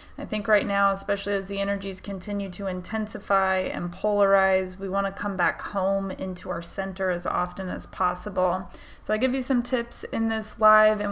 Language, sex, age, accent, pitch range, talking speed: English, female, 20-39, American, 195-230 Hz, 195 wpm